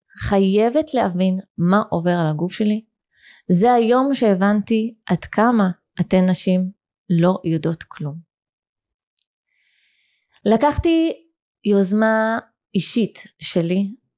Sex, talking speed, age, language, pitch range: female, 90 wpm, 20-39, Hebrew, 175-240 Hz